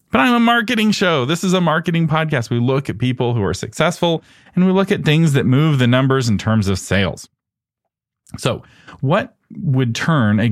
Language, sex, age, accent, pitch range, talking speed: English, male, 40-59, American, 105-145 Hz, 200 wpm